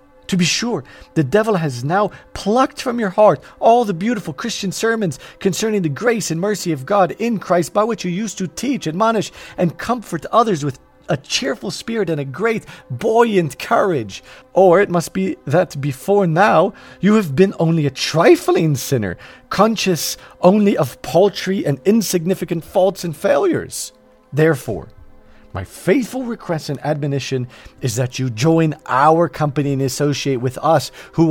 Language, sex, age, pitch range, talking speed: English, male, 40-59, 140-195 Hz, 160 wpm